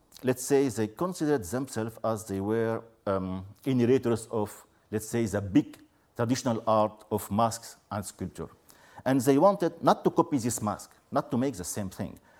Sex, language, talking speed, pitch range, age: male, English, 170 wpm, 105-145 Hz, 50-69